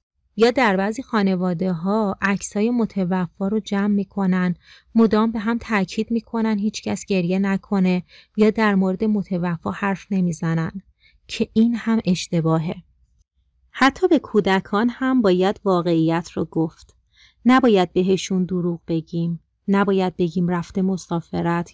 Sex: female